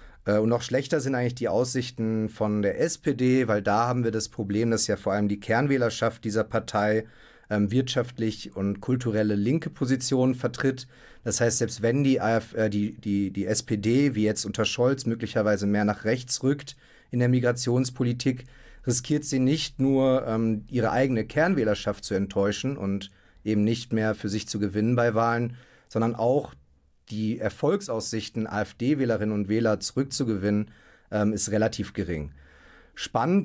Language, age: German, 40-59